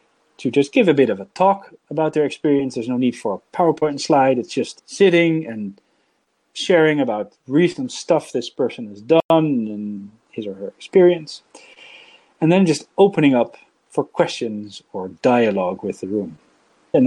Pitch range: 115-160 Hz